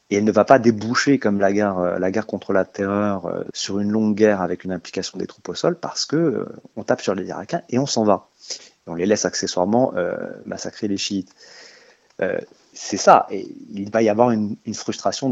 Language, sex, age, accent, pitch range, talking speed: French, male, 30-49, French, 100-125 Hz, 225 wpm